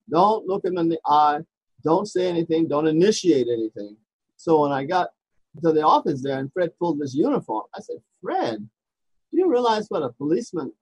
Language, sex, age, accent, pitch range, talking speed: English, male, 50-69, American, 135-185 Hz, 190 wpm